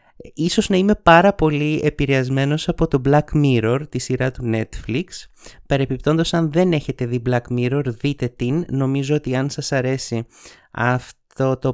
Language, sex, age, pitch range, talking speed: Greek, male, 30-49, 125-165 Hz, 155 wpm